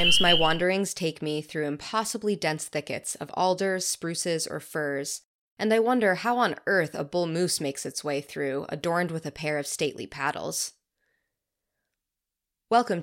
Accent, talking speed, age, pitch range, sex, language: American, 155 wpm, 20-39, 150-200 Hz, female, English